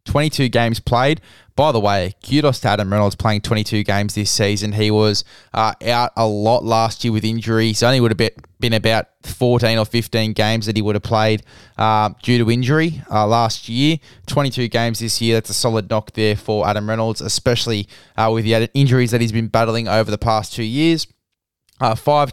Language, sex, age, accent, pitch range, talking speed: English, male, 20-39, Australian, 105-125 Hz, 200 wpm